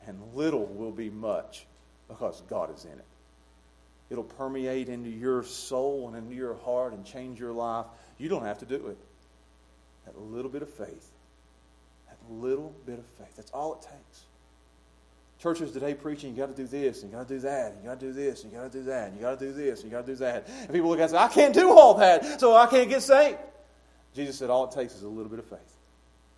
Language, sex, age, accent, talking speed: English, male, 30-49, American, 240 wpm